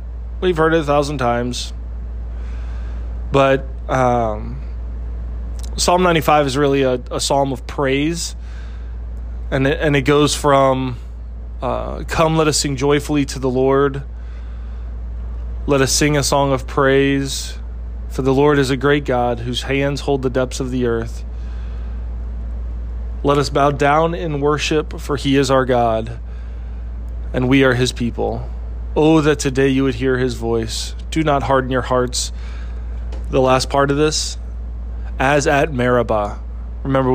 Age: 20-39